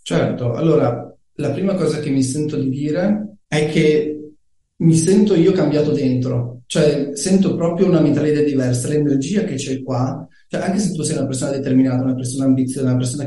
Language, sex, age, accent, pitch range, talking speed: Italian, male, 30-49, native, 130-155 Hz, 180 wpm